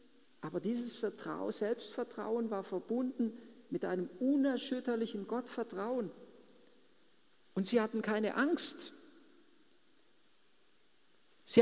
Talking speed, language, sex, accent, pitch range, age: 75 wpm, German, male, German, 210-275 Hz, 50-69